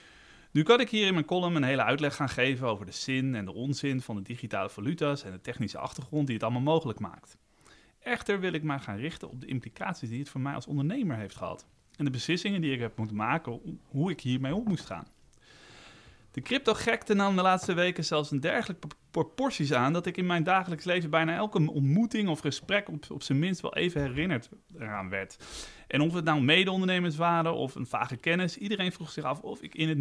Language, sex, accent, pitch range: Dutch, male, Dutch, 120-170 Hz